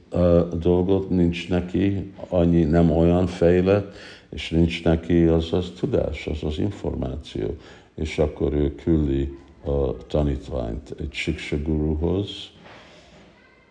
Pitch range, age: 70-85 Hz, 60-79